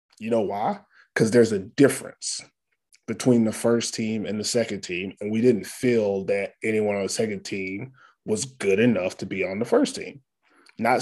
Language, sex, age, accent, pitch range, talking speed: English, male, 20-39, American, 105-125 Hz, 190 wpm